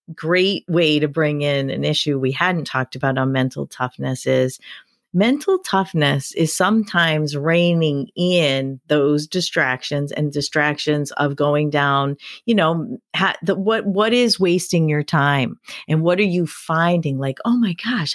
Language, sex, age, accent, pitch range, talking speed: English, female, 40-59, American, 140-180 Hz, 155 wpm